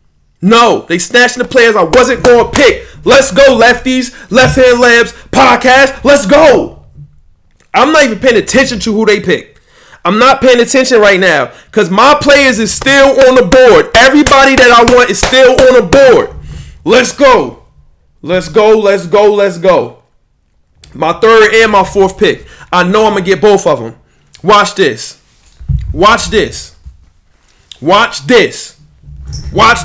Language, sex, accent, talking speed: English, male, American, 165 wpm